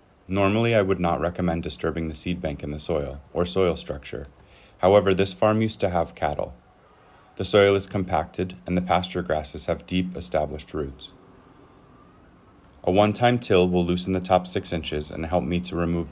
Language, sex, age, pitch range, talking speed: English, male, 30-49, 80-95 Hz, 180 wpm